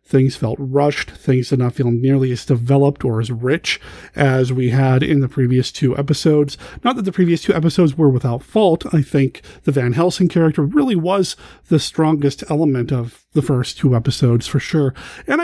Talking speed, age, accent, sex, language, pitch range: 190 wpm, 40-59, American, male, English, 135-180 Hz